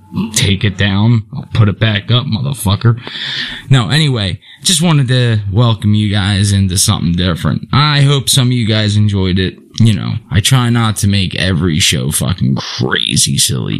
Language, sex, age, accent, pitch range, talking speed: English, male, 20-39, American, 95-120 Hz, 175 wpm